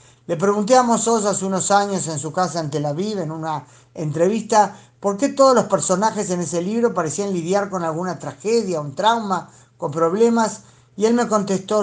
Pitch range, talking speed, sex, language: 150-200 Hz, 190 wpm, male, Spanish